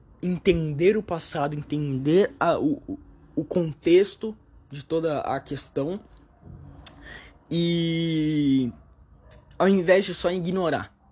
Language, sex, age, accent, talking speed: Portuguese, male, 20-39, Brazilian, 90 wpm